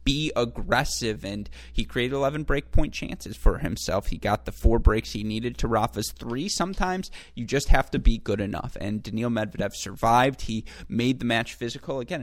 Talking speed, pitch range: 185 wpm, 105-120 Hz